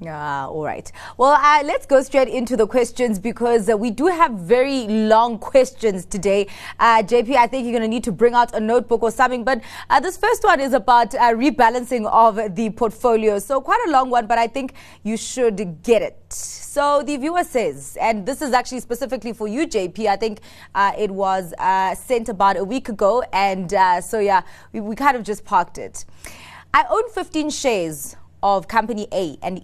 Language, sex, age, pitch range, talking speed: English, female, 20-39, 190-255 Hz, 205 wpm